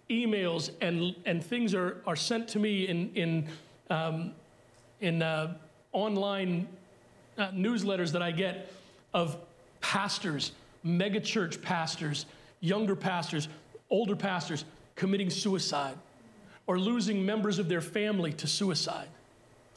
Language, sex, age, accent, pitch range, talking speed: English, male, 40-59, American, 160-220 Hz, 120 wpm